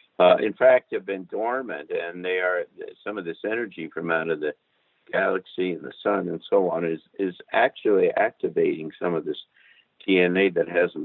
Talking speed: 185 wpm